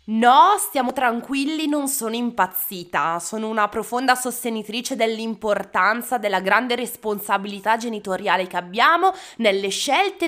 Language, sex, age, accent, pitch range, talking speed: Italian, female, 20-39, native, 190-240 Hz, 110 wpm